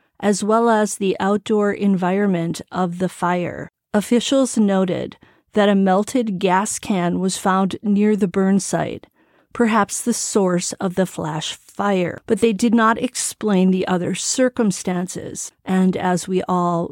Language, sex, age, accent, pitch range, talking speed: English, female, 40-59, American, 190-230 Hz, 145 wpm